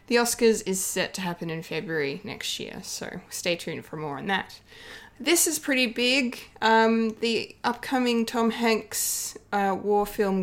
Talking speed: 165 wpm